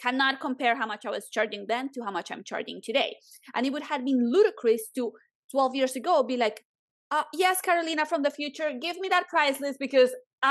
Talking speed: 215 wpm